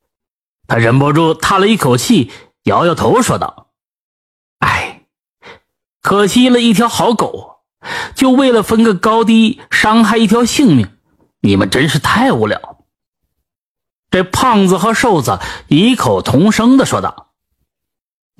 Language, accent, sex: Chinese, native, male